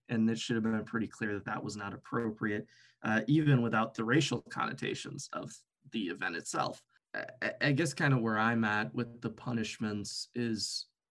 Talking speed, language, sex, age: 185 wpm, English, male, 20-39